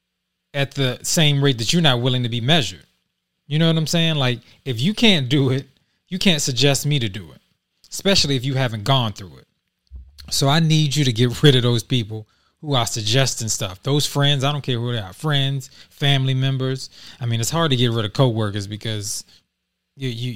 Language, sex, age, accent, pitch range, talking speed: English, male, 20-39, American, 110-140 Hz, 210 wpm